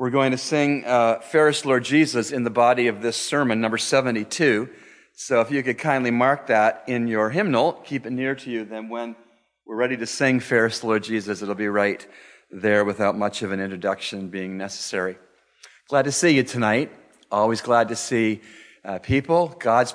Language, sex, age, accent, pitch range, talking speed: English, male, 40-59, American, 105-125 Hz, 190 wpm